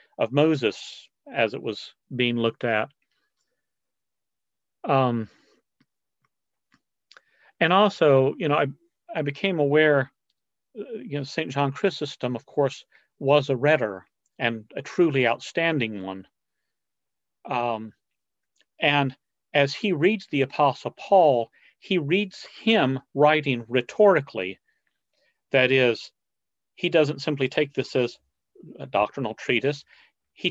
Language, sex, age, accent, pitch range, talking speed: English, male, 40-59, American, 125-165 Hz, 110 wpm